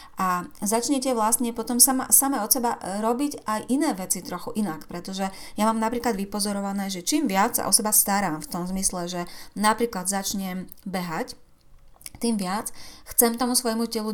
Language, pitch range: Slovak, 185-235 Hz